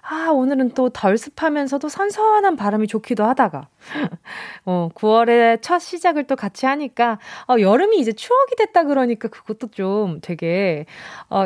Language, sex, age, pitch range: Korean, female, 20-39, 205-295 Hz